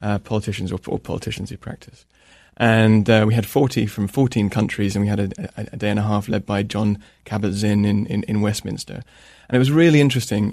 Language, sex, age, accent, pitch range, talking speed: English, male, 20-39, British, 105-115 Hz, 210 wpm